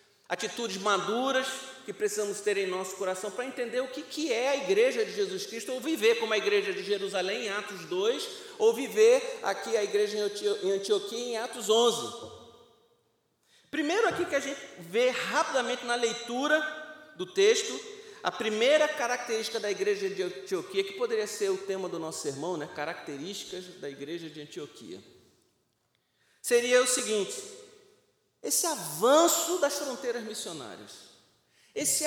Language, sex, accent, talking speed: Portuguese, male, Brazilian, 150 wpm